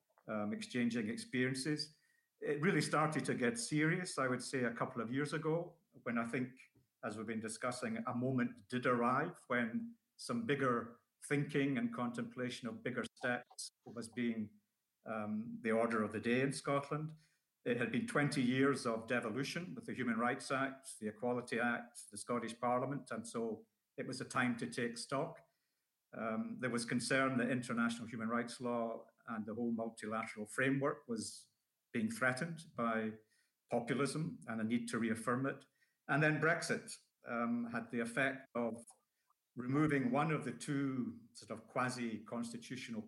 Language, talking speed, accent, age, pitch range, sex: English, 160 wpm, British, 50-69, 115-140 Hz, male